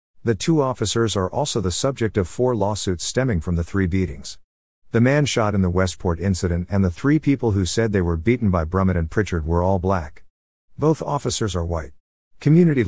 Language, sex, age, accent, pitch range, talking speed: English, male, 50-69, American, 90-115 Hz, 200 wpm